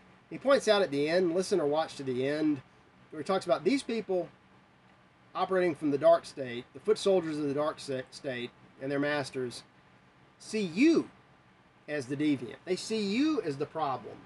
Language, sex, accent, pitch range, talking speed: English, male, American, 130-195 Hz, 190 wpm